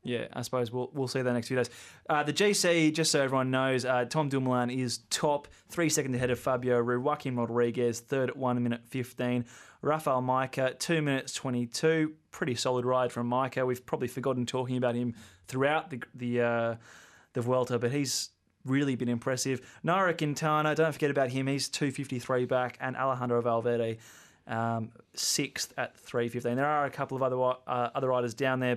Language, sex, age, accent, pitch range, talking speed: English, male, 20-39, Australian, 120-140 Hz, 190 wpm